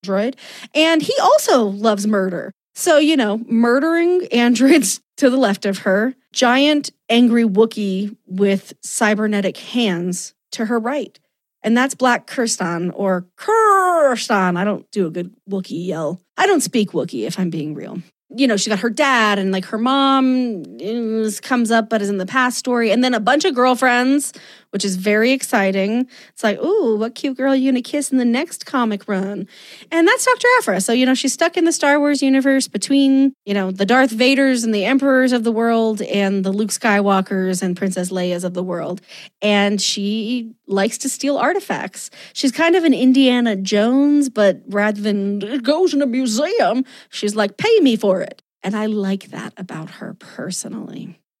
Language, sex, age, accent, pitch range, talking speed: English, female, 30-49, American, 200-265 Hz, 185 wpm